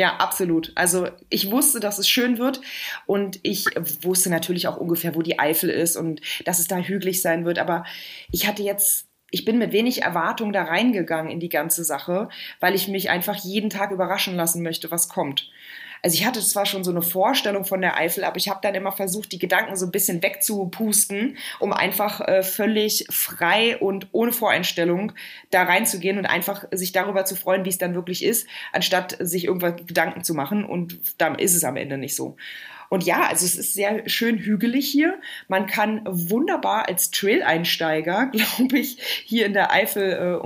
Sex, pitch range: female, 175-210 Hz